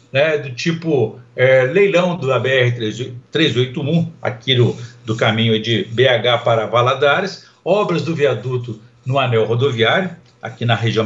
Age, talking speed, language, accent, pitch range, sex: 60-79, 135 wpm, Portuguese, Brazilian, 125-170 Hz, male